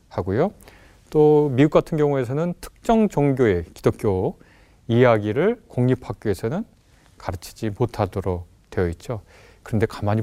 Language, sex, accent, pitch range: Korean, male, native, 100-160 Hz